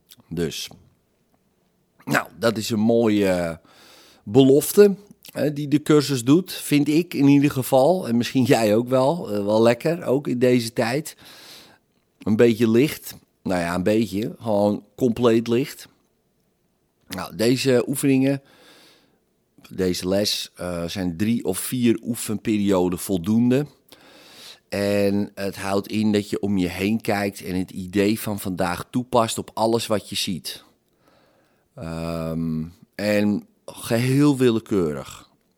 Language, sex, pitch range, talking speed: Dutch, male, 95-120 Hz, 120 wpm